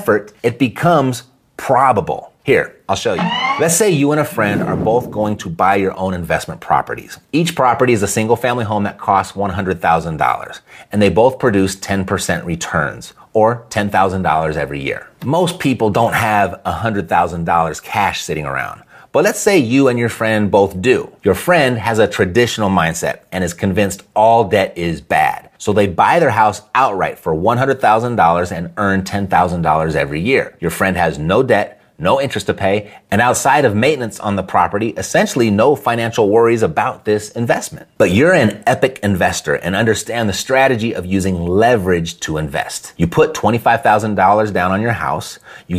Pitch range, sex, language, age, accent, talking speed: 95-120 Hz, male, English, 30-49, American, 170 wpm